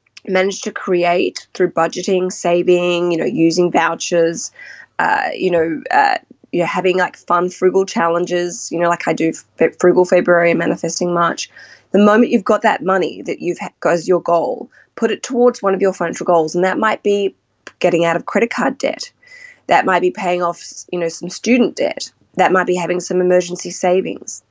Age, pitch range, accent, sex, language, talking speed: 20-39, 170-200 Hz, Australian, female, English, 190 wpm